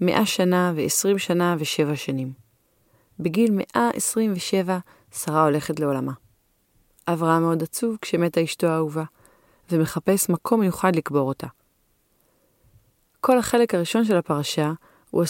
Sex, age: female, 30-49